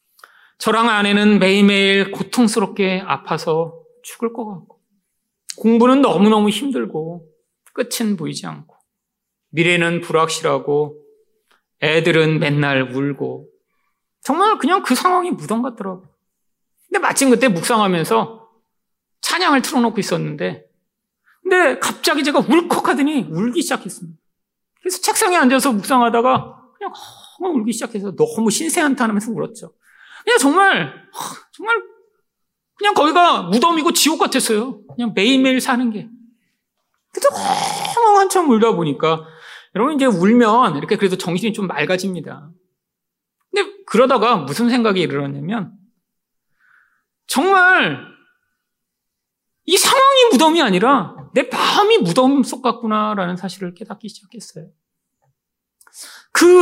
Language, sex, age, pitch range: Korean, male, 40-59, 195-310 Hz